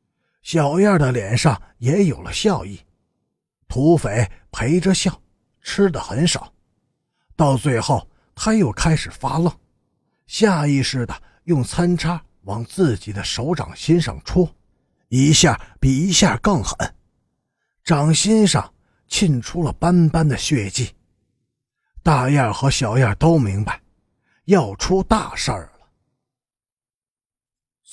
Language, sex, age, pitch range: Chinese, male, 50-69, 110-175 Hz